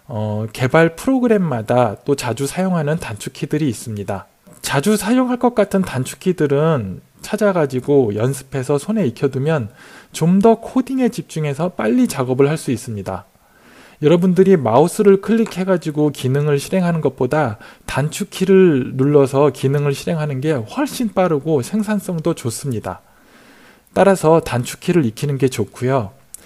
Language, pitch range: Korean, 125-185 Hz